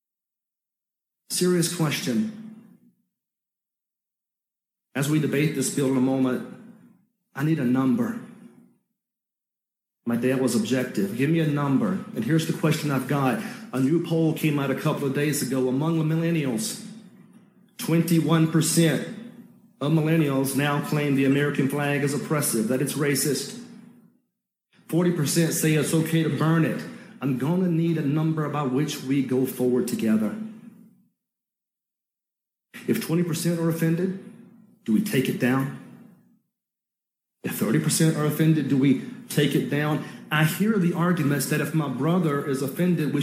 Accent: American